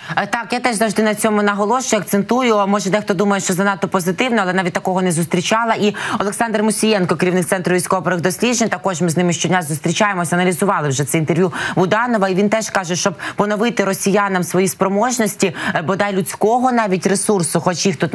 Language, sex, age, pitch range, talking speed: Ukrainian, female, 20-39, 175-210 Hz, 170 wpm